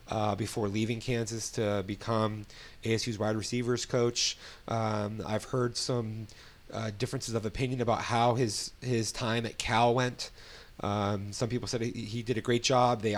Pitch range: 100-115 Hz